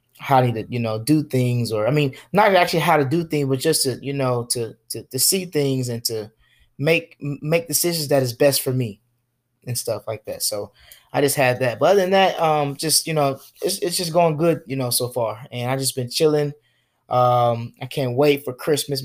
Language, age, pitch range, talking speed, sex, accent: English, 20-39, 120-145 Hz, 225 wpm, male, American